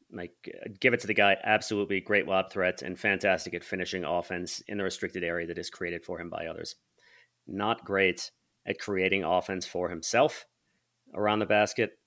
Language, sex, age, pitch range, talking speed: English, male, 30-49, 90-105 Hz, 180 wpm